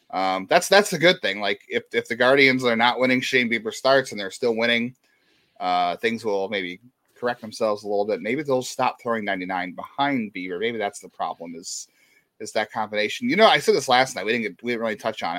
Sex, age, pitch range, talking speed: male, 30-49, 105-140 Hz, 235 wpm